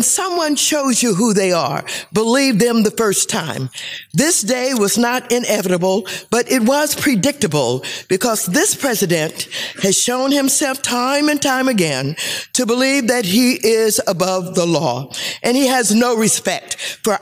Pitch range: 190-260 Hz